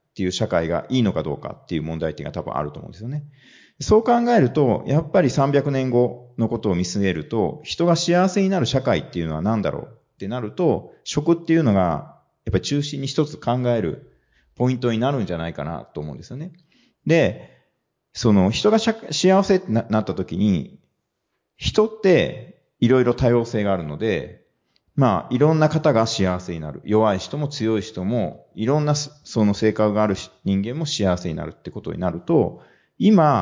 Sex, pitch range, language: male, 95-160 Hz, Japanese